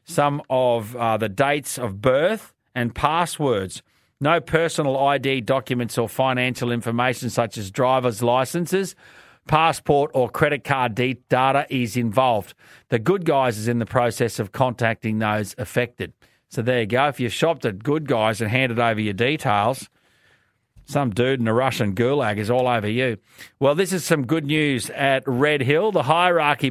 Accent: Australian